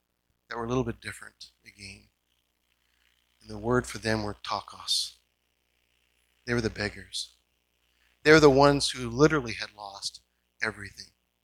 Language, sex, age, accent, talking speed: English, male, 40-59, American, 140 wpm